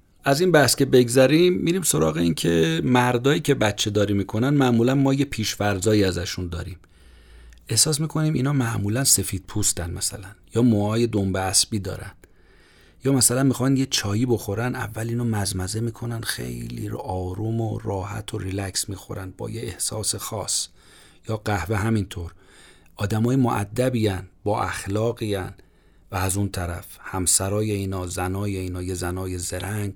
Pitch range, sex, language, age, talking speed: 95-125 Hz, male, Persian, 40-59, 145 wpm